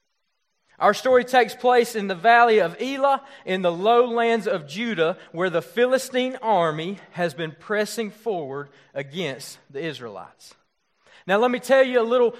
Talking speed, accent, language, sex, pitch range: 155 wpm, American, English, male, 185-240 Hz